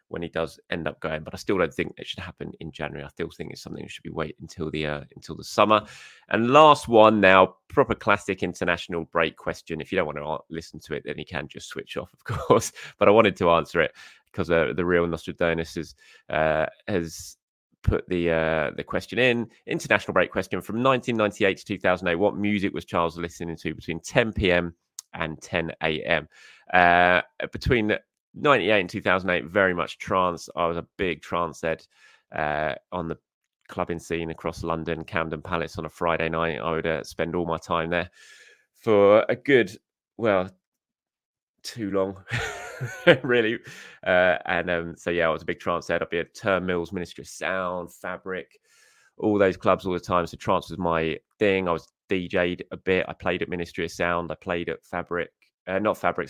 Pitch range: 80-95 Hz